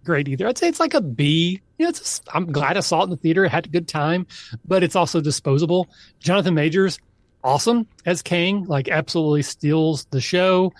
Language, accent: English, American